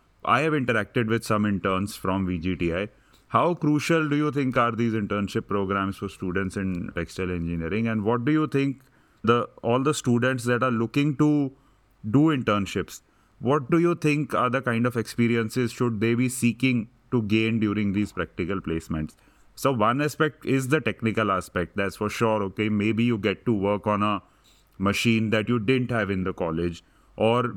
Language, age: English, 30-49